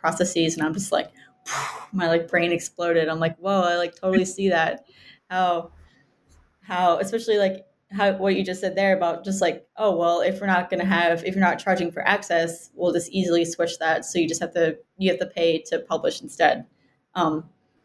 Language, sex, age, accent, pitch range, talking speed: English, female, 20-39, American, 165-190 Hz, 210 wpm